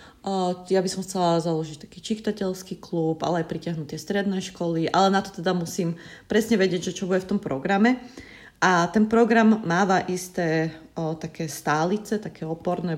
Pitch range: 160-185 Hz